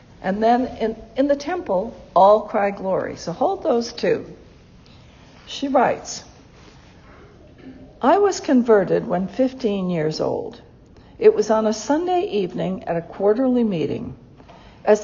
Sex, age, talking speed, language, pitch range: female, 60-79, 130 wpm, English, 185-270 Hz